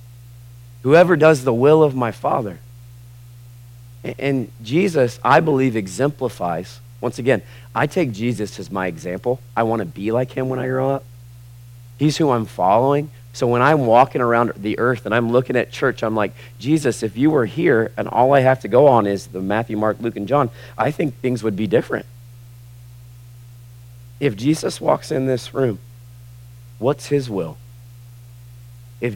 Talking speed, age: 170 wpm, 40-59